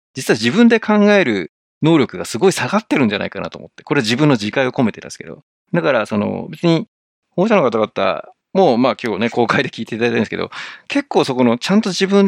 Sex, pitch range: male, 110-175 Hz